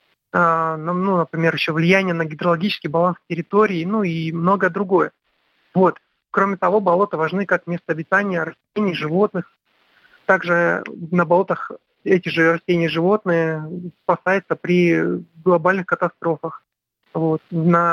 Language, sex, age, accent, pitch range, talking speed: Russian, male, 30-49, native, 170-195 Hz, 115 wpm